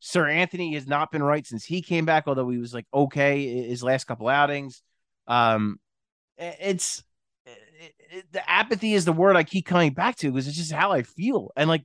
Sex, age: male, 30-49